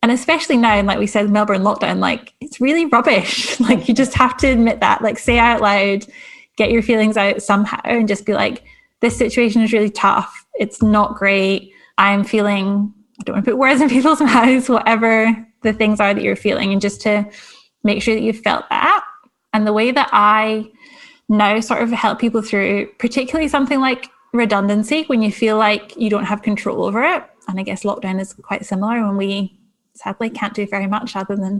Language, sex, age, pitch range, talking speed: English, female, 10-29, 210-255 Hz, 205 wpm